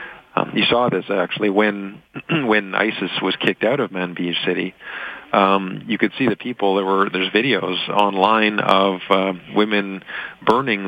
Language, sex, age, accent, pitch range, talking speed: English, male, 40-59, American, 95-105 Hz, 160 wpm